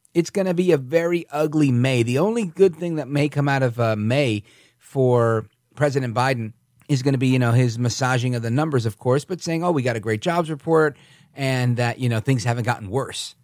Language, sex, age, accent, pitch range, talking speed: English, male, 40-59, American, 125-165 Hz, 230 wpm